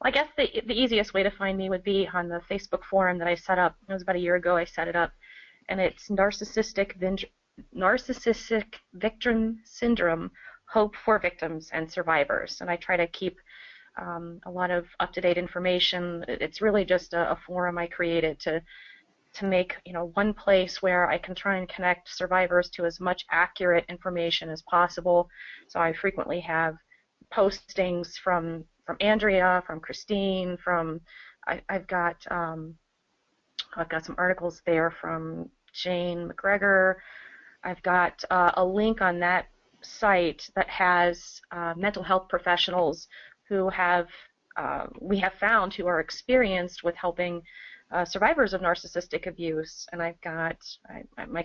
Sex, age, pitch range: female, 30-49, 170-195 Hz